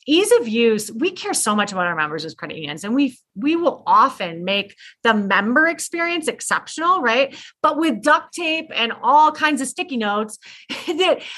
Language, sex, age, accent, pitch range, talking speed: English, female, 30-49, American, 190-275 Hz, 185 wpm